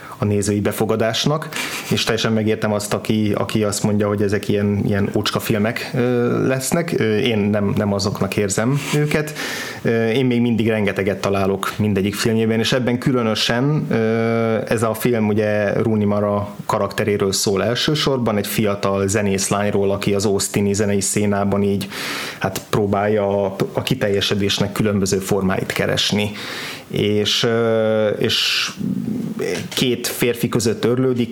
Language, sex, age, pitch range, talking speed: Hungarian, male, 30-49, 100-115 Hz, 125 wpm